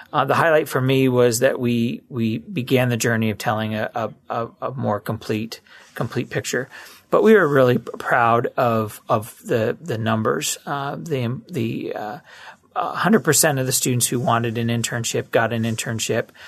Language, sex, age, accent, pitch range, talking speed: English, male, 30-49, American, 115-130 Hz, 175 wpm